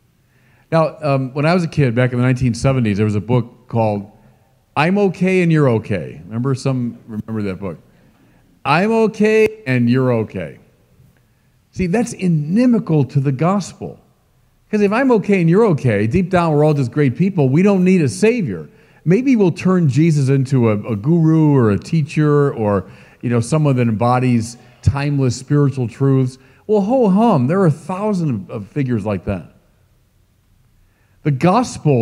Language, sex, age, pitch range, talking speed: English, male, 50-69, 115-180 Hz, 165 wpm